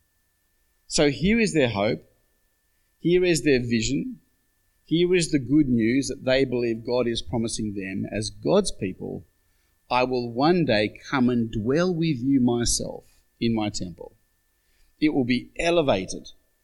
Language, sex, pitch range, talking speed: English, male, 100-140 Hz, 150 wpm